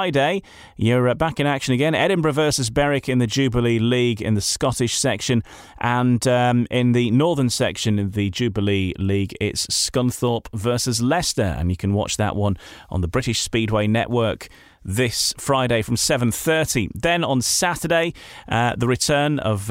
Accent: British